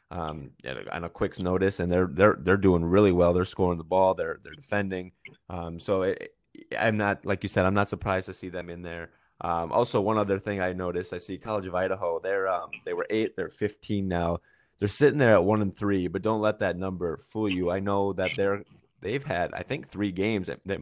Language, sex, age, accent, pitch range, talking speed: English, male, 20-39, American, 85-100 Hz, 235 wpm